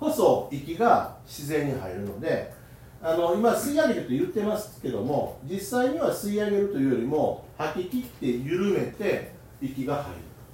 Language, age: Japanese, 40-59